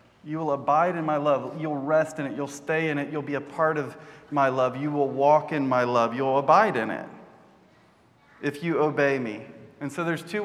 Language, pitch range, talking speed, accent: English, 140-160 Hz, 225 wpm, American